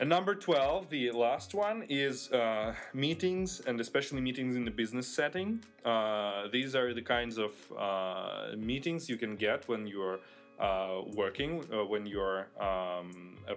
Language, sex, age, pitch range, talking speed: Russian, male, 20-39, 100-130 Hz, 160 wpm